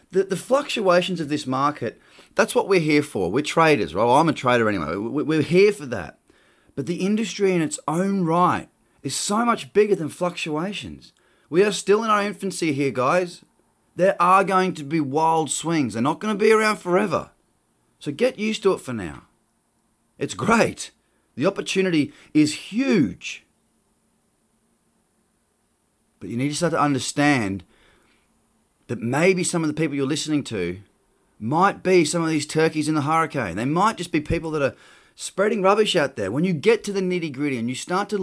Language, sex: English, male